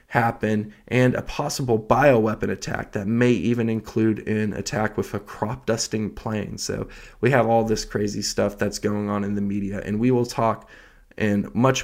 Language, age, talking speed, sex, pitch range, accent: English, 20-39, 180 wpm, male, 105-130 Hz, American